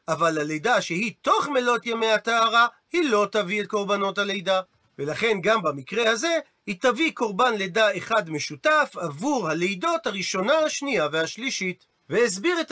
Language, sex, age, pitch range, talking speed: Hebrew, male, 40-59, 190-250 Hz, 140 wpm